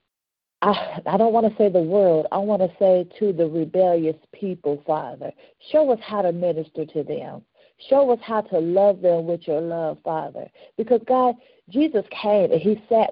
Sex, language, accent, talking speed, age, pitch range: female, English, American, 190 wpm, 50-69, 180-255 Hz